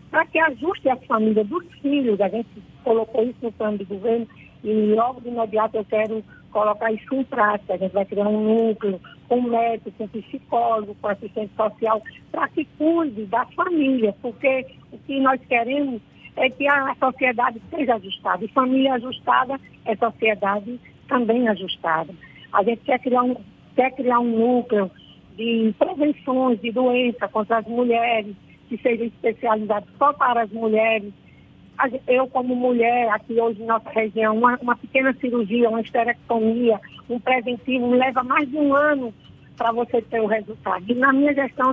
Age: 50-69